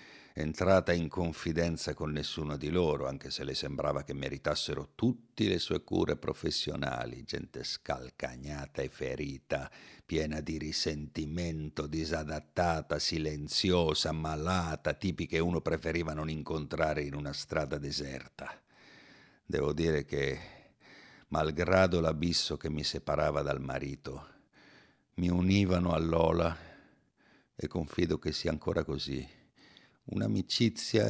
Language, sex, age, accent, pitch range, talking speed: Italian, male, 60-79, native, 75-90 Hz, 115 wpm